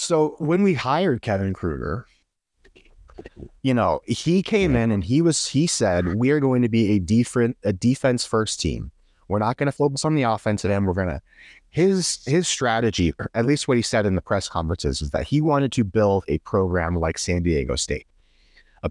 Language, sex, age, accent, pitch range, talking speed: English, male, 30-49, American, 85-120 Hz, 205 wpm